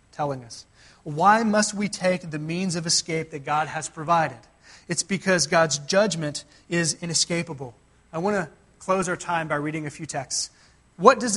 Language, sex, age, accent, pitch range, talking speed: English, male, 30-49, American, 150-195 Hz, 175 wpm